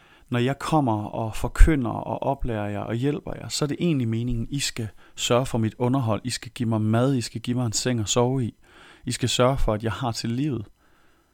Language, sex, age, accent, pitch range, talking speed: Danish, male, 30-49, native, 110-130 Hz, 245 wpm